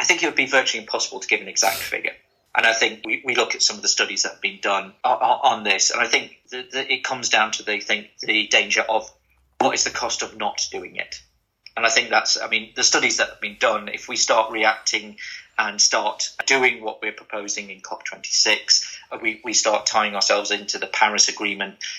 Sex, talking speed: male, 225 wpm